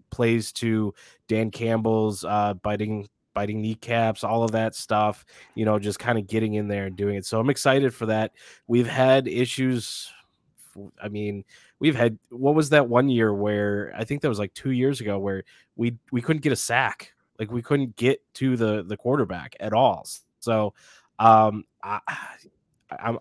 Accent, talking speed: American, 175 wpm